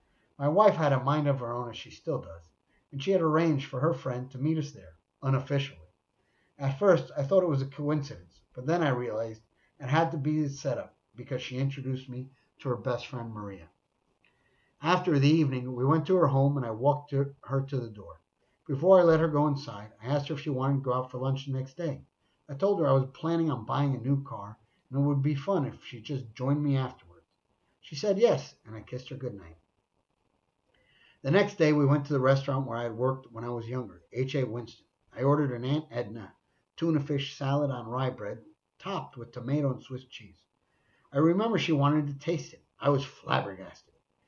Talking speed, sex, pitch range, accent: 220 wpm, male, 125-155 Hz, American